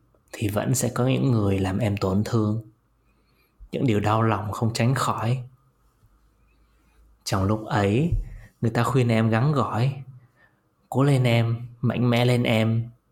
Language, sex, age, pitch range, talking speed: Vietnamese, male, 20-39, 105-125 Hz, 150 wpm